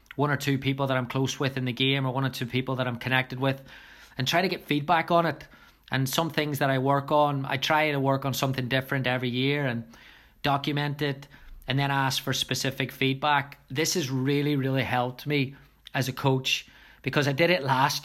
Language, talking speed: English, 220 wpm